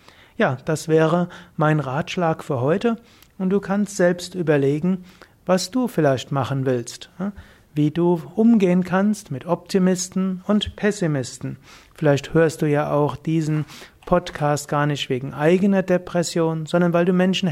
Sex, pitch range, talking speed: male, 140-180 Hz, 140 wpm